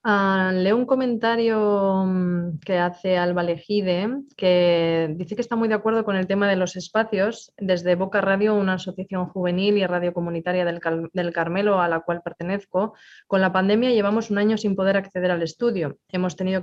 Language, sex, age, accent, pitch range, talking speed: English, female, 20-39, Spanish, 180-205 Hz, 185 wpm